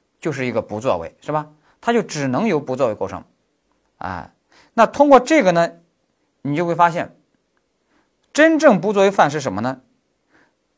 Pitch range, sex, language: 140-230 Hz, male, Chinese